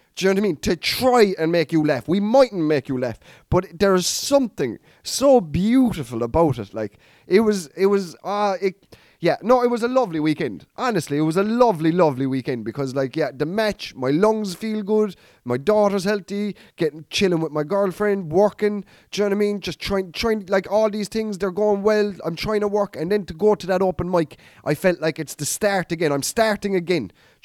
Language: English